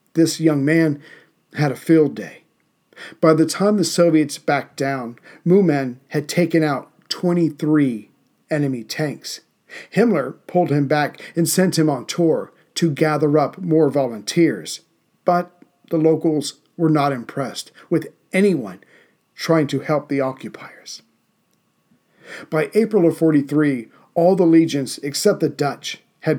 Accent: American